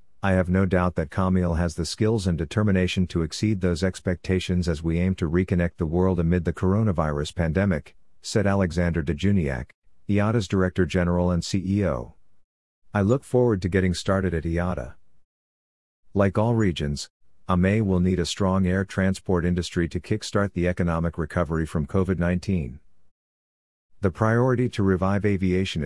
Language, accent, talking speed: English, American, 155 wpm